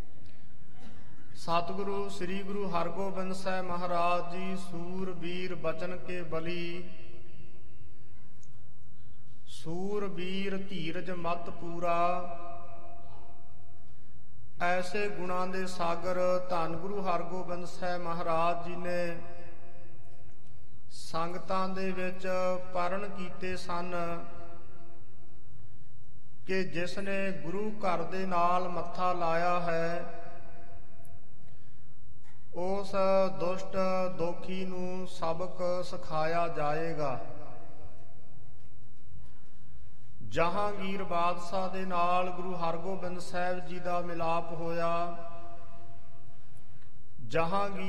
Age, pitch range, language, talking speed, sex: 50-69, 165-185 Hz, English, 65 wpm, male